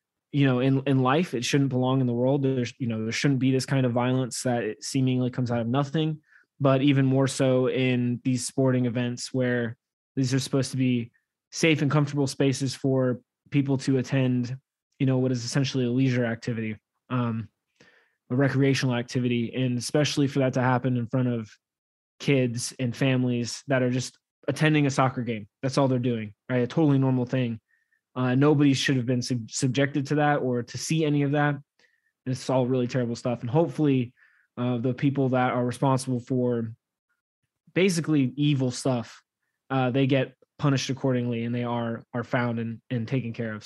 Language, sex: English, male